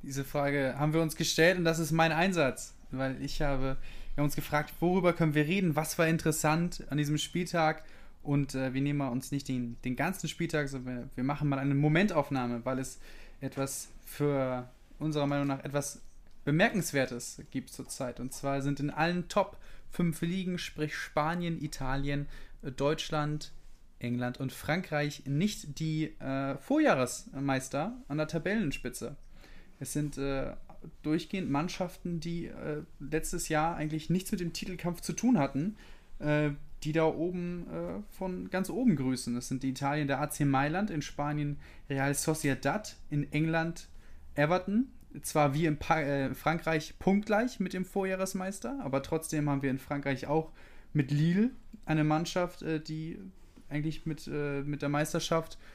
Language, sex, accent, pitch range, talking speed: German, male, German, 140-170 Hz, 155 wpm